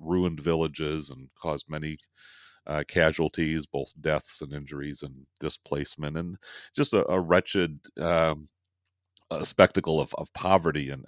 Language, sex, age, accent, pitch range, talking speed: English, male, 40-59, American, 75-80 Hz, 135 wpm